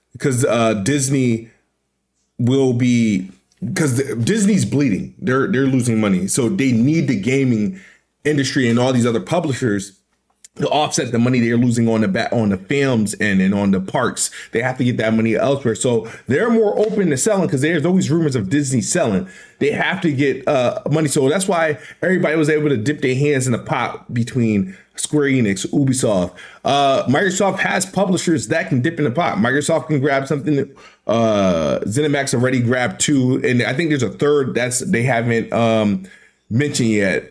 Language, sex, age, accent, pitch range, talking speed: English, male, 20-39, American, 115-160 Hz, 185 wpm